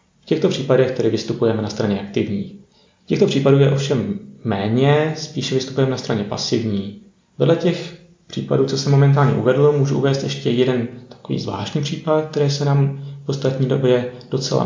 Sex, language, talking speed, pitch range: male, Czech, 165 wpm, 115-140 Hz